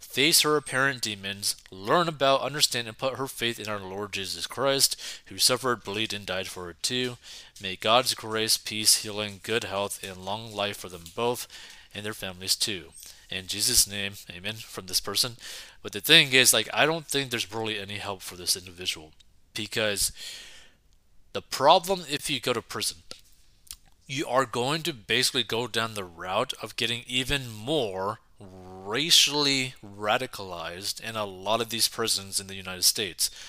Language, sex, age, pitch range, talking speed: English, male, 30-49, 95-120 Hz, 170 wpm